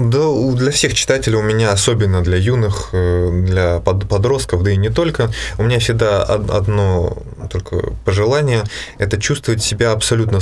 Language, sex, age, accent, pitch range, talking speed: Russian, male, 20-39, native, 95-115 Hz, 150 wpm